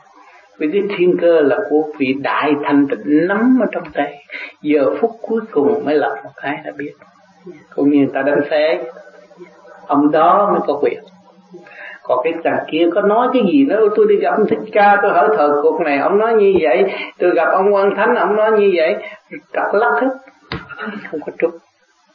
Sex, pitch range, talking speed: male, 145-205 Hz, 200 wpm